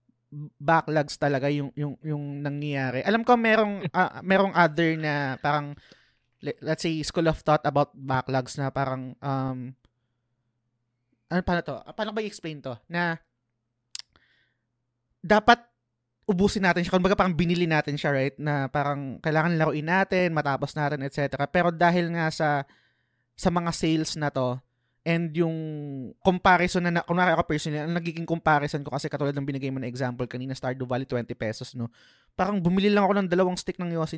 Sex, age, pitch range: male, 20-39, 130-175 Hz